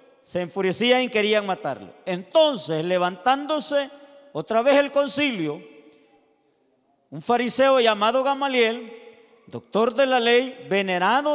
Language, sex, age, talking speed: Spanish, male, 40-59, 105 wpm